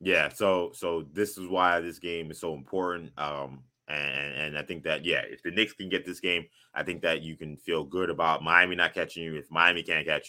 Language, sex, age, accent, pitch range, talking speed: English, male, 20-39, American, 75-100 Hz, 240 wpm